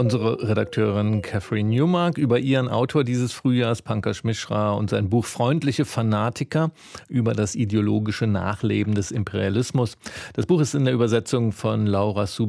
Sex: male